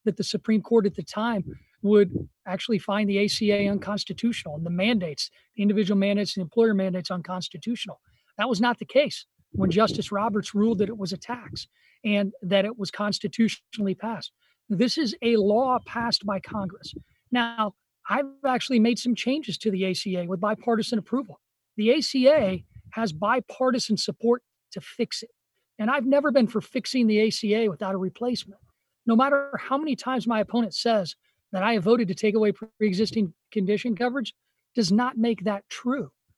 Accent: American